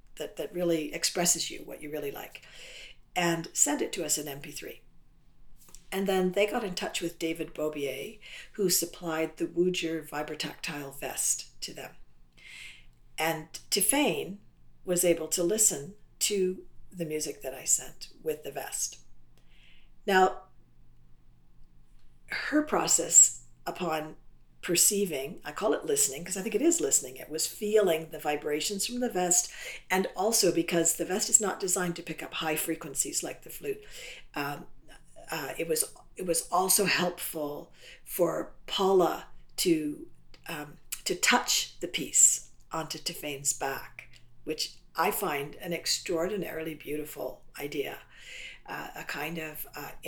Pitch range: 150-185 Hz